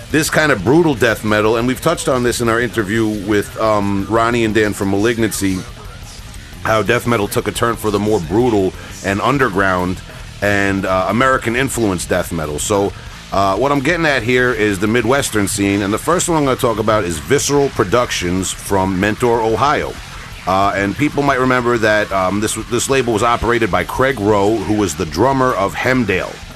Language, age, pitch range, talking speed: English, 40-59, 95-120 Hz, 190 wpm